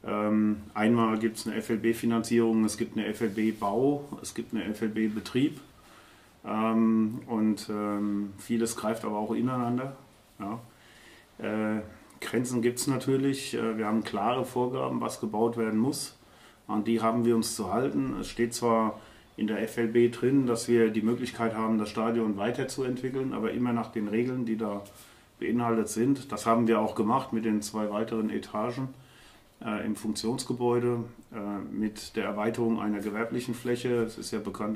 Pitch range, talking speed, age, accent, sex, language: 110-120 Hz, 155 wpm, 40-59, German, male, German